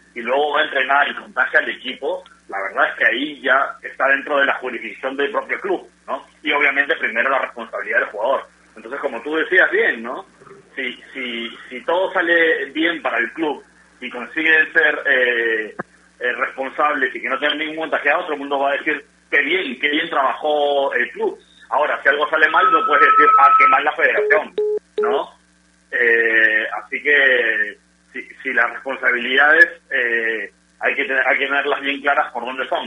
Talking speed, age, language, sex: 190 wpm, 40-59, Spanish, male